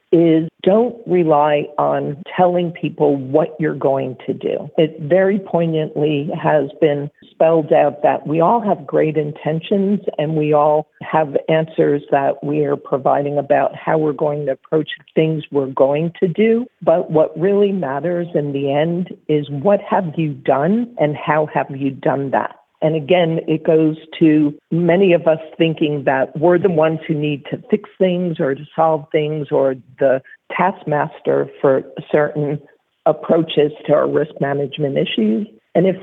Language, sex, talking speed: English, female, 160 wpm